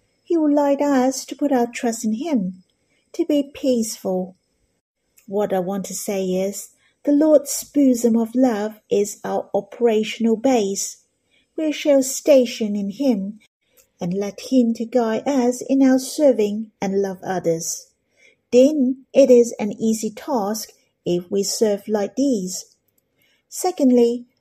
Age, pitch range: 50-69, 205-270 Hz